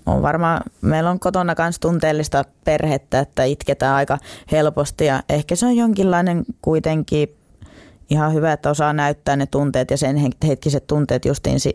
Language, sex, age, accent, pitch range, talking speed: Finnish, female, 20-39, native, 130-160 Hz, 155 wpm